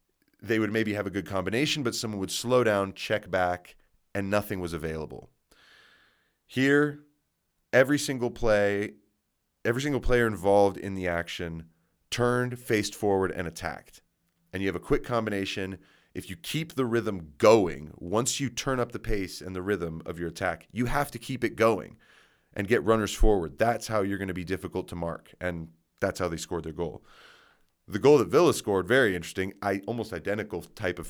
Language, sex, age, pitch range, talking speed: English, male, 30-49, 85-115 Hz, 185 wpm